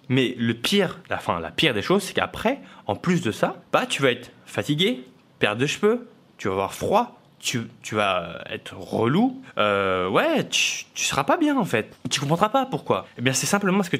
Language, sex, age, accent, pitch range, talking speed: French, male, 20-39, French, 130-180 Hz, 225 wpm